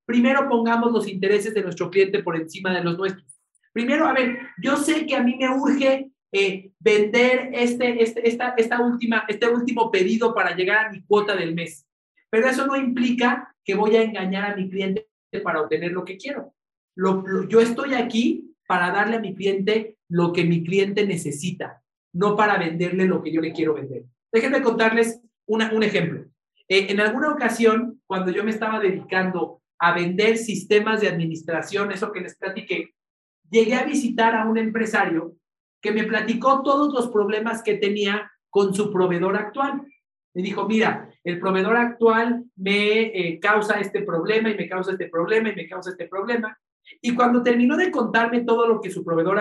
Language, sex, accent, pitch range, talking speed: Spanish, male, Mexican, 185-230 Hz, 185 wpm